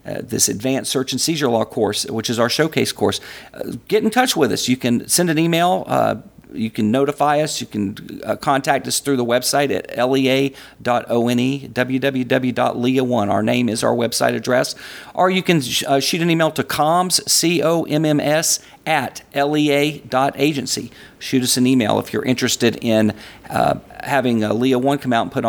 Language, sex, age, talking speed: English, male, 40-59, 180 wpm